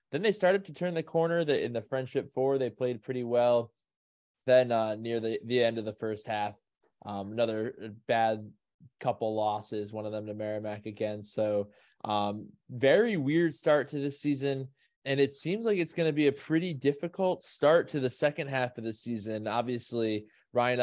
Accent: American